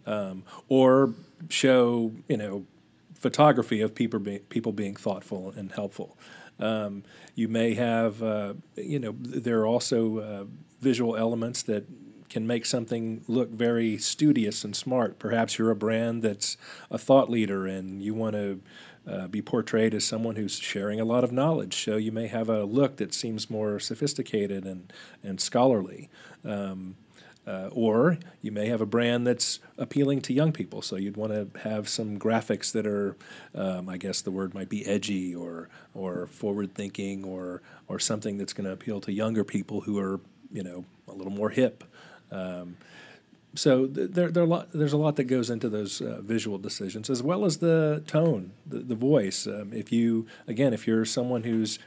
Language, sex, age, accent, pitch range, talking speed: English, male, 40-59, American, 100-120 Hz, 180 wpm